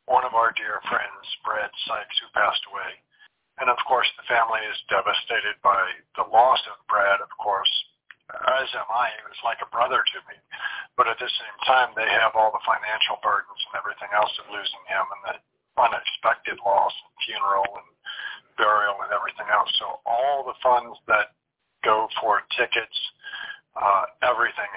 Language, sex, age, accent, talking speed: English, male, 50-69, American, 175 wpm